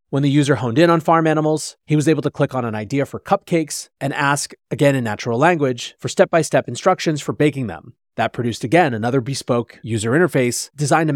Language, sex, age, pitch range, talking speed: English, male, 30-49, 125-160 Hz, 210 wpm